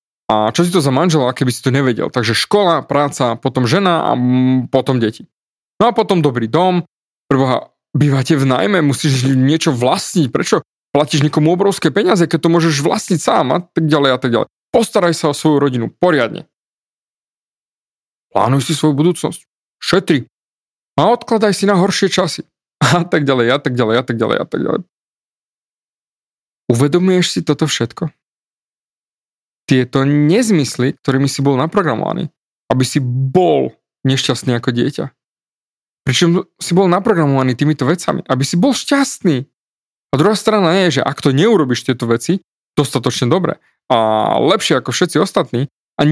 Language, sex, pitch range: Slovak, male, 135-180 Hz